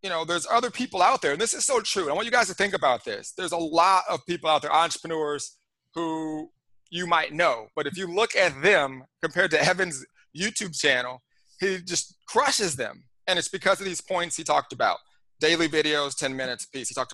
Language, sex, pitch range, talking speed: English, male, 155-190 Hz, 225 wpm